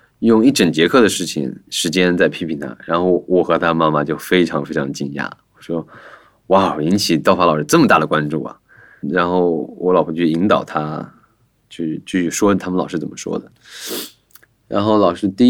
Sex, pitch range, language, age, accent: male, 85-110 Hz, Chinese, 20-39, native